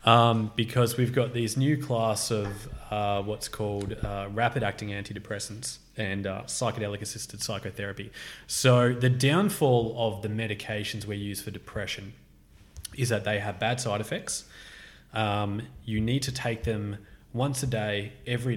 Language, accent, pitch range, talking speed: English, Australian, 105-125 Hz, 150 wpm